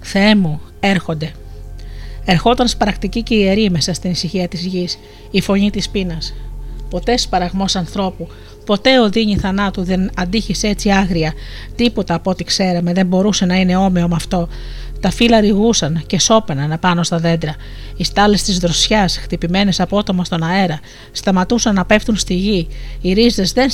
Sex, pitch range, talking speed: female, 175-210 Hz, 155 wpm